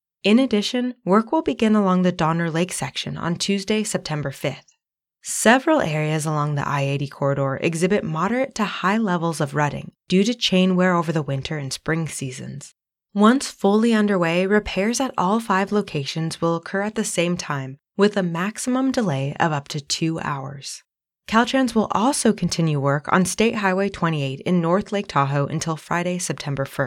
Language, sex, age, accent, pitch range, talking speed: English, female, 20-39, American, 150-200 Hz, 170 wpm